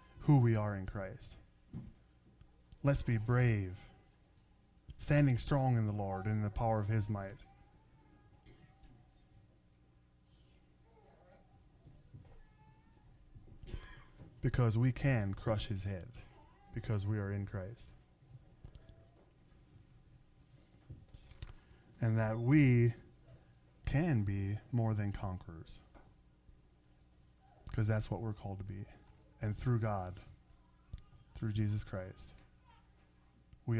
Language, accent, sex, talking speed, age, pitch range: English, American, male, 95 wpm, 20-39, 75-115 Hz